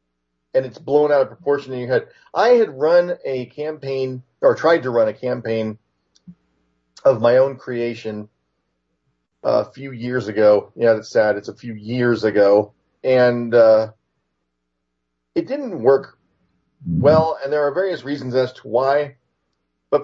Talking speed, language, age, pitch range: 155 wpm, English, 40-59, 110-160 Hz